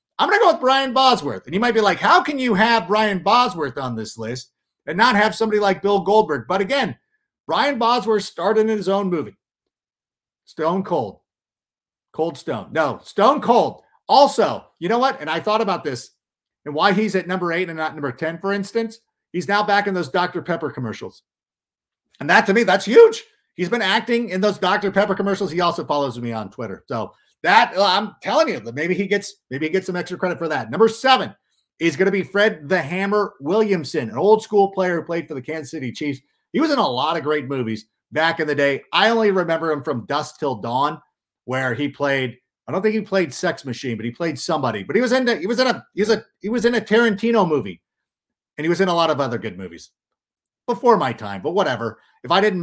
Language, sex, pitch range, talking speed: English, male, 150-220 Hz, 230 wpm